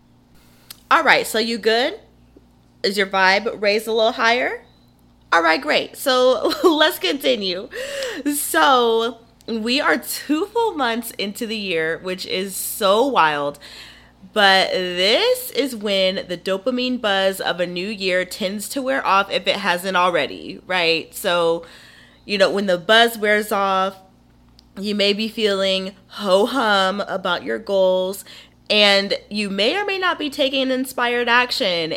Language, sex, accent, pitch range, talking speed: English, female, American, 185-250 Hz, 145 wpm